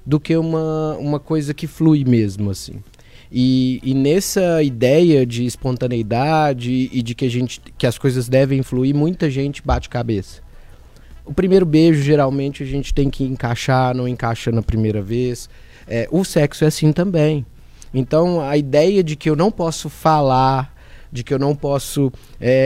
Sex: male